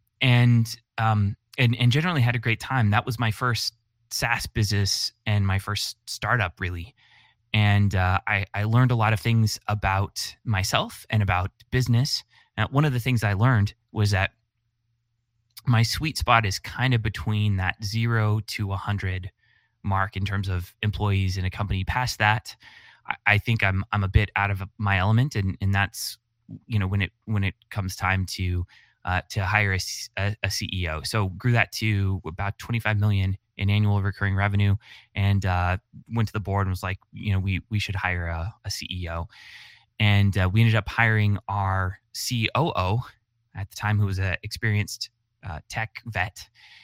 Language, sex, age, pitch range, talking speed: English, male, 20-39, 95-115 Hz, 180 wpm